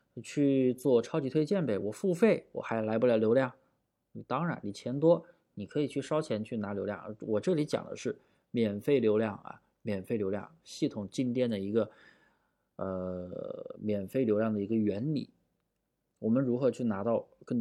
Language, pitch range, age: Chinese, 105-125 Hz, 20-39